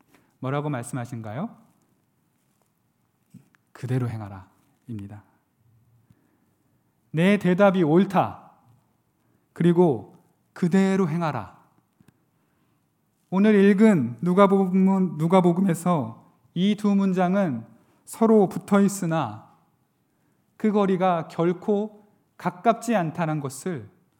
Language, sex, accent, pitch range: Korean, male, native, 130-195 Hz